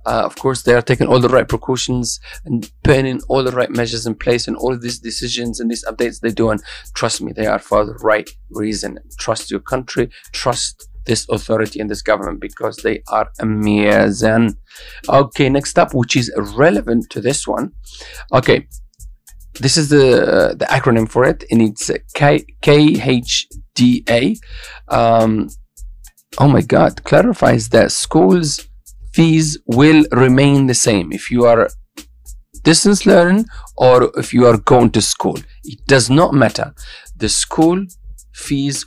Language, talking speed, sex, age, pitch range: English, 165 wpm, male, 40-59, 110-135 Hz